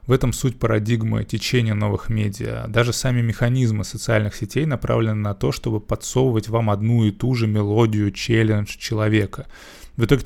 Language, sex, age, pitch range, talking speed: Russian, male, 20-39, 110-125 Hz, 160 wpm